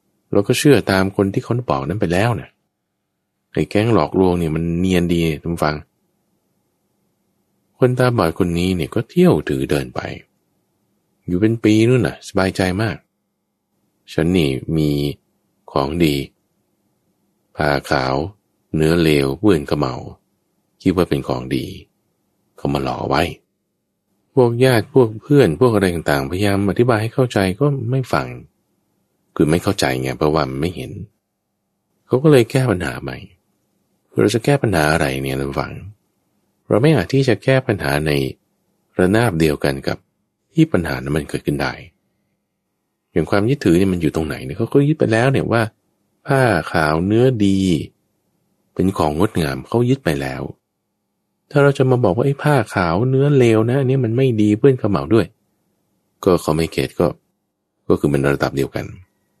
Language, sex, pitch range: English, male, 75-120 Hz